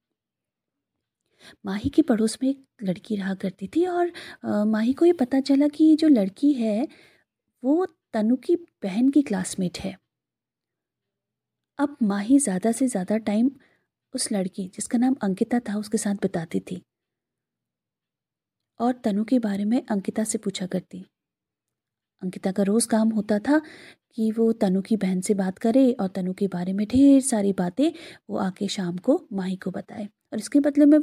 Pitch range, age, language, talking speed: 195-270 Hz, 20-39, Hindi, 160 wpm